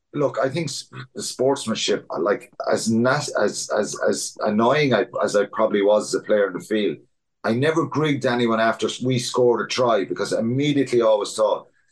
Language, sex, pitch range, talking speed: English, male, 115-140 Hz, 180 wpm